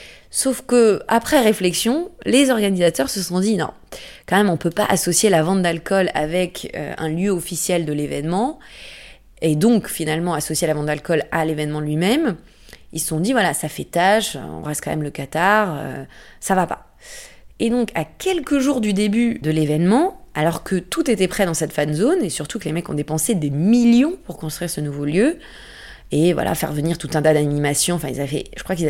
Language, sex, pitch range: French, female, 155-225 Hz